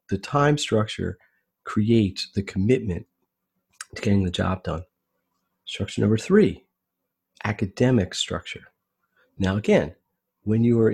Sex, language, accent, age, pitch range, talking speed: male, English, American, 40-59, 95-120 Hz, 115 wpm